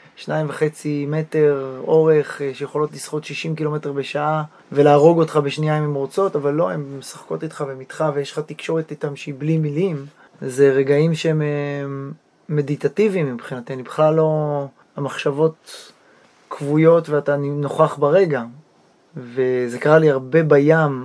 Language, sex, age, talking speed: Hebrew, male, 20-39, 135 wpm